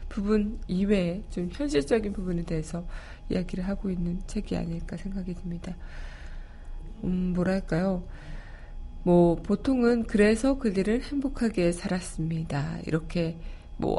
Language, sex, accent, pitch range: Korean, female, native, 155-205 Hz